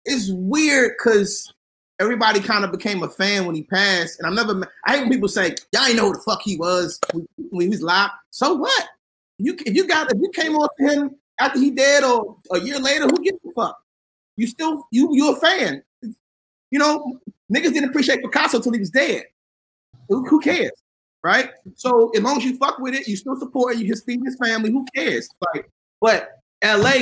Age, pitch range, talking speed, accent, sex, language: 30-49, 195-265 Hz, 210 wpm, American, male, English